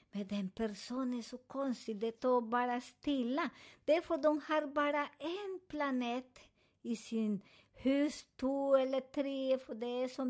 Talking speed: 165 wpm